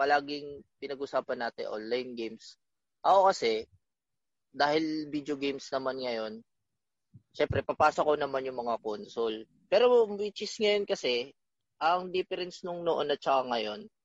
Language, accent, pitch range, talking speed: Filipino, native, 120-170 Hz, 130 wpm